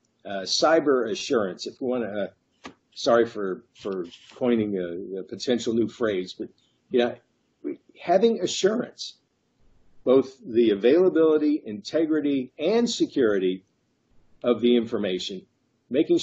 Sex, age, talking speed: male, 50-69, 115 wpm